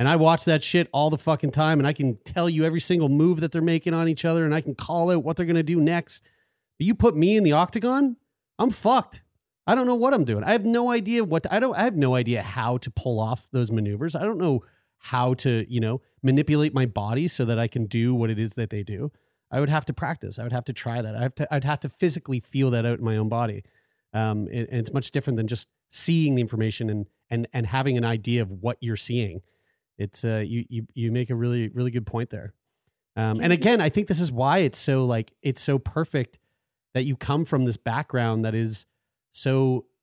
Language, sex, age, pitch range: English, male, 30-49, 115-155 Hz